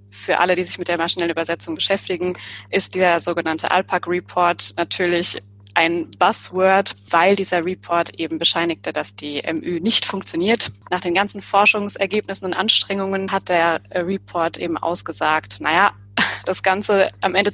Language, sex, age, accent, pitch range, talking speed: German, female, 20-39, German, 165-200 Hz, 145 wpm